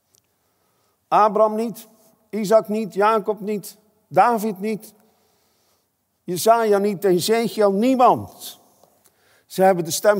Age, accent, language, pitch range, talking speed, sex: 50-69, Dutch, Dutch, 155-215 Hz, 100 wpm, male